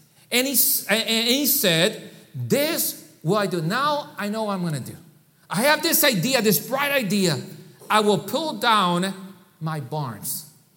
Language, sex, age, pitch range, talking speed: English, male, 40-59, 195-275 Hz, 165 wpm